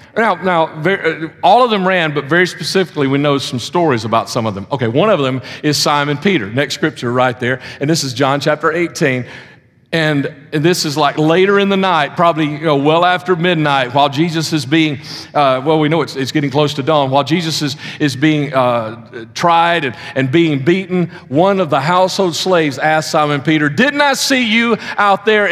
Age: 40-59